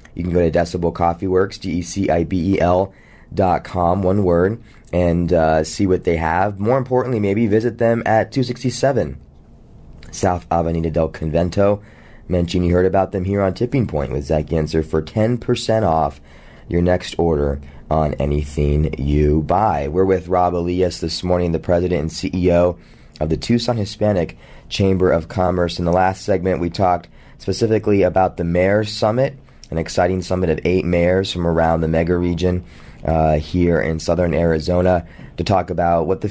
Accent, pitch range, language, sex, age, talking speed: American, 80-95 Hz, English, male, 20-39, 165 wpm